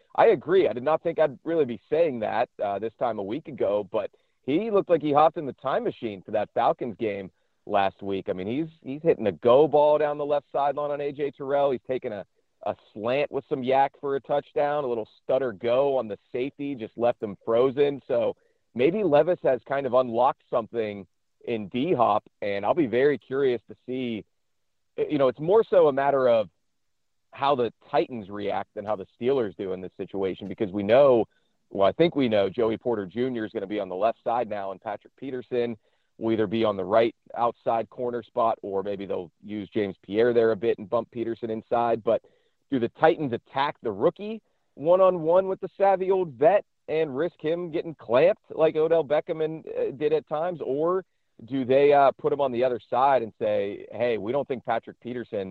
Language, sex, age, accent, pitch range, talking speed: English, male, 40-59, American, 115-165 Hz, 210 wpm